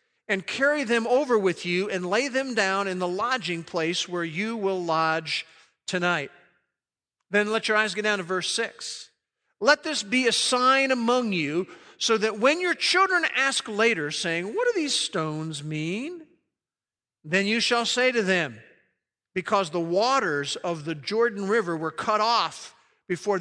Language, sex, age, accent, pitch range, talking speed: English, male, 50-69, American, 170-230 Hz, 165 wpm